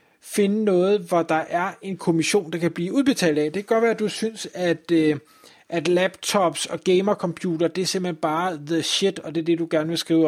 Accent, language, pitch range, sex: native, Danish, 160-195 Hz, male